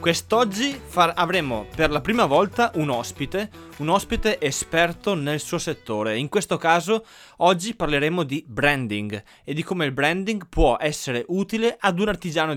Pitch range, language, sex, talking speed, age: 135-185 Hz, Italian, male, 155 wpm, 20-39